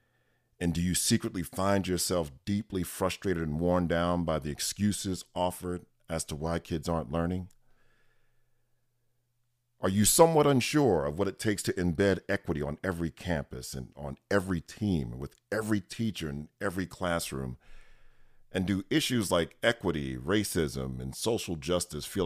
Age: 40-59